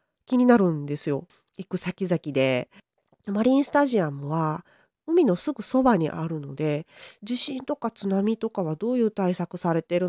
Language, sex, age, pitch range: Japanese, female, 40-59, 160-250 Hz